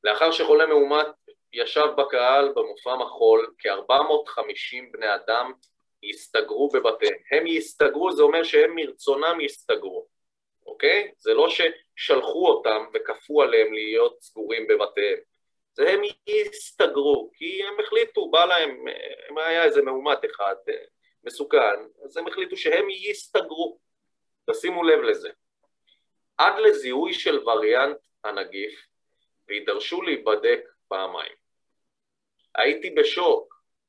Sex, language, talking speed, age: male, Hebrew, 110 wpm, 30-49